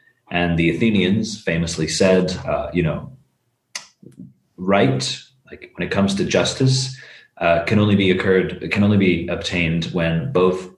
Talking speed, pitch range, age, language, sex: 145 wpm, 85-105 Hz, 30-49, English, male